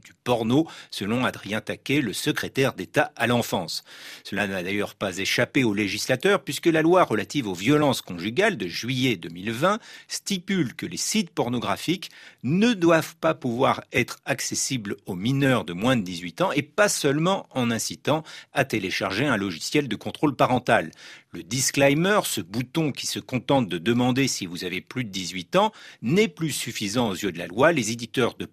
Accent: French